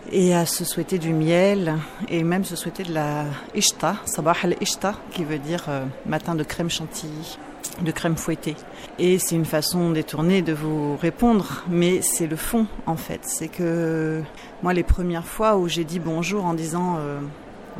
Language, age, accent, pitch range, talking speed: French, 30-49, French, 160-190 Hz, 180 wpm